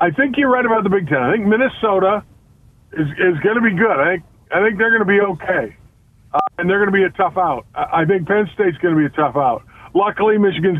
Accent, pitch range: American, 145-200 Hz